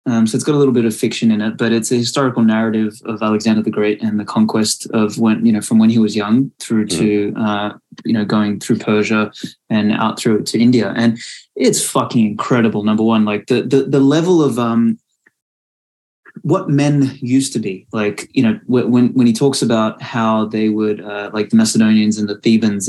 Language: English